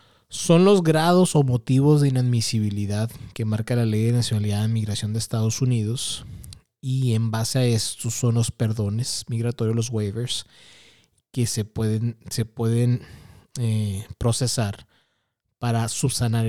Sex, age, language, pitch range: male, 20-39, Spanish, 110-135 Hz